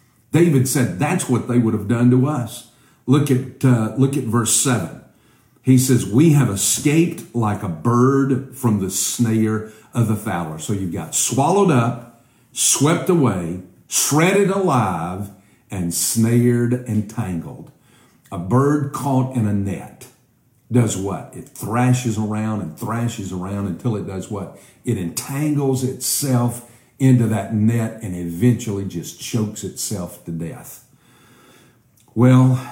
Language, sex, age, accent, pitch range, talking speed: English, male, 50-69, American, 100-125 Hz, 135 wpm